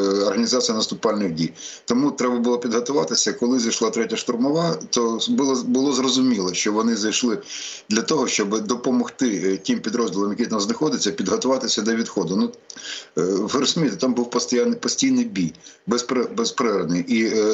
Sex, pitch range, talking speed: male, 110-135 Hz, 130 wpm